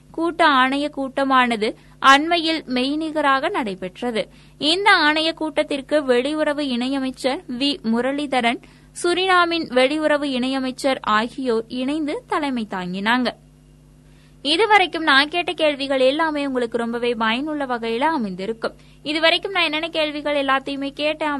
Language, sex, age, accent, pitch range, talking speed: Tamil, female, 20-39, native, 260-315 Hz, 100 wpm